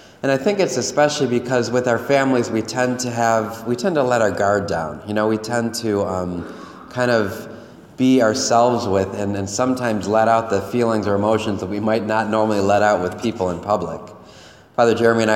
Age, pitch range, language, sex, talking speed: 30-49, 100-120 Hz, English, male, 210 wpm